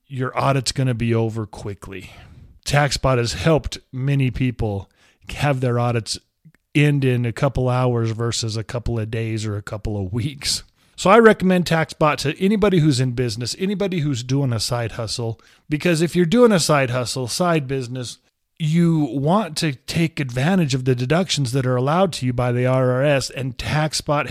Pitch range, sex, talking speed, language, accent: 125-170 Hz, male, 175 wpm, English, American